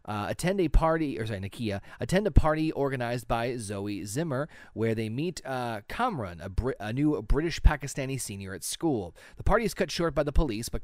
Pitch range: 110-150 Hz